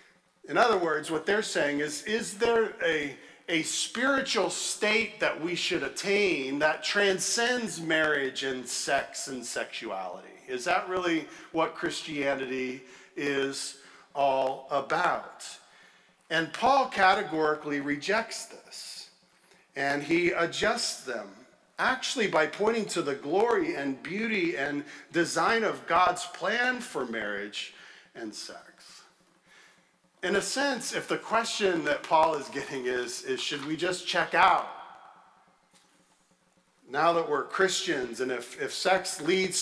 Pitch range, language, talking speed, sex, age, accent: 140-195 Hz, English, 125 wpm, male, 50-69, American